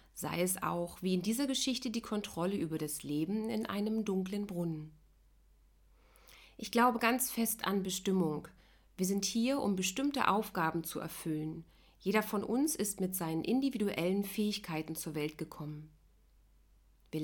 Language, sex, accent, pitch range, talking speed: German, female, German, 170-230 Hz, 145 wpm